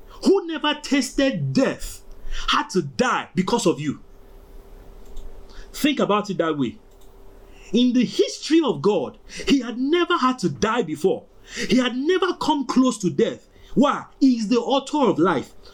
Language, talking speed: English, 155 wpm